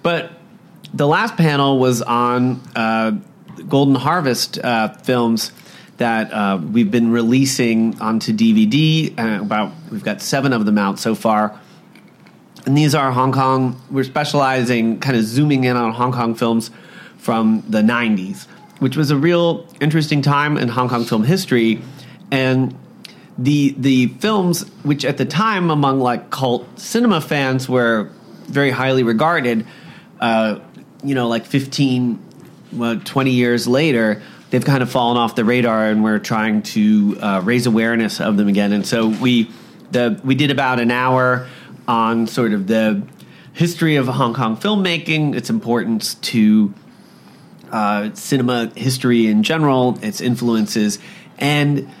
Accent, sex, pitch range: American, male, 115-145 Hz